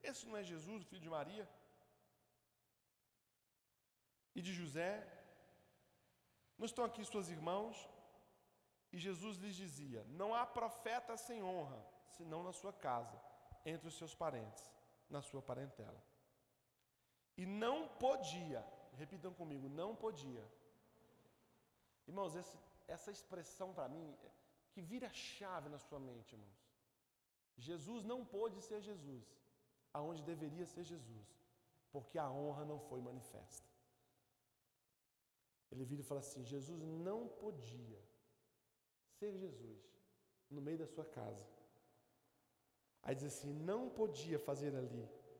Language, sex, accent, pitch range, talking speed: Gujarati, male, Brazilian, 130-190 Hz, 130 wpm